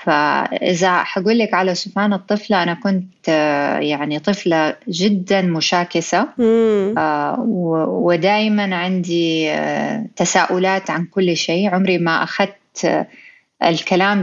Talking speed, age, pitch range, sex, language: 95 wpm, 30-49, 180-225 Hz, female, Arabic